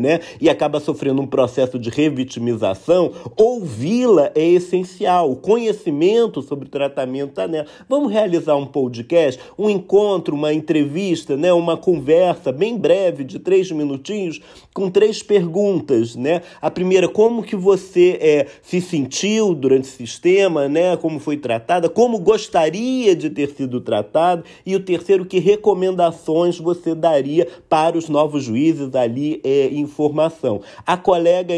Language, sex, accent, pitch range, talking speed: Portuguese, male, Brazilian, 145-195 Hz, 145 wpm